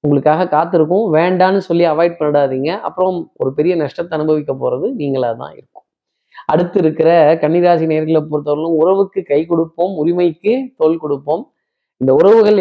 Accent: native